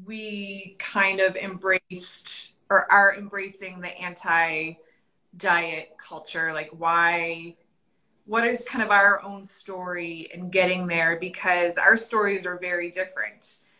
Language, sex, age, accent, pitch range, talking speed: English, female, 20-39, American, 180-215 Hz, 120 wpm